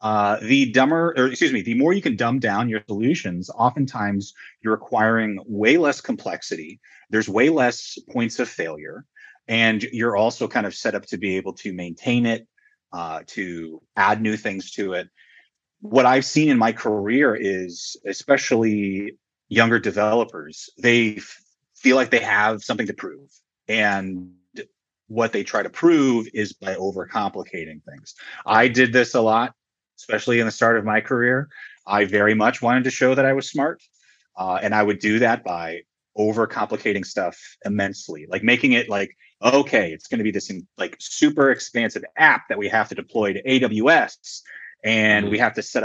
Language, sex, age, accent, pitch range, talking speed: English, male, 30-49, American, 105-135 Hz, 175 wpm